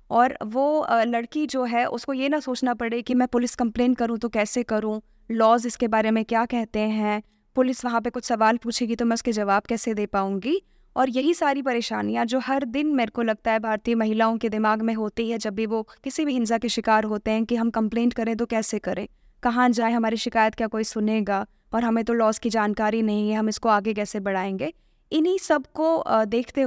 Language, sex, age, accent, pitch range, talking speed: Hindi, female, 20-39, native, 220-255 Hz, 220 wpm